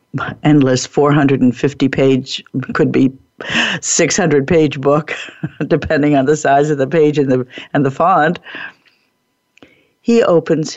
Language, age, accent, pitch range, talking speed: English, 60-79, American, 135-165 Hz, 115 wpm